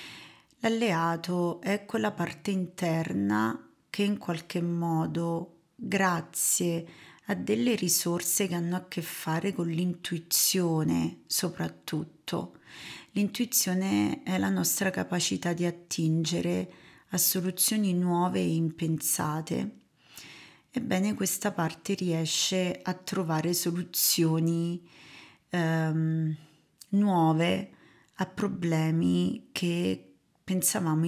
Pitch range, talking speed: 160-190 Hz, 90 wpm